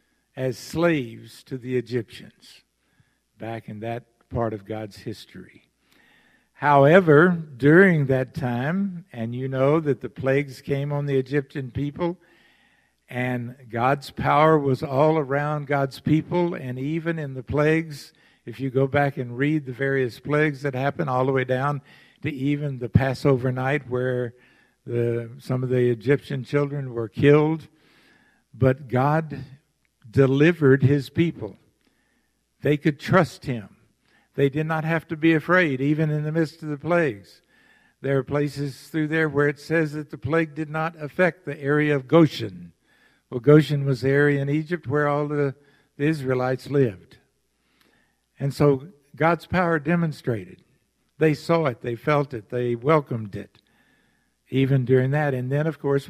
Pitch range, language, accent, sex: 130-155 Hz, English, American, male